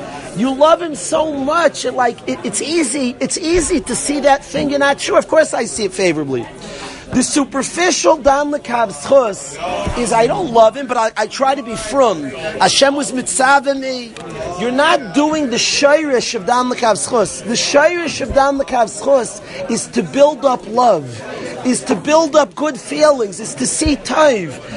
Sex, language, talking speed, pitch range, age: male, English, 170 wpm, 230-295 Hz, 40-59